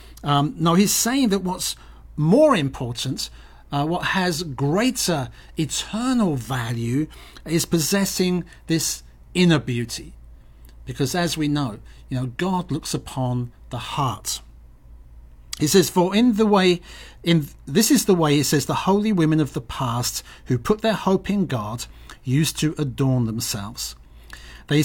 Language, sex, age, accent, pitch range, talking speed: English, male, 50-69, British, 120-165 Hz, 145 wpm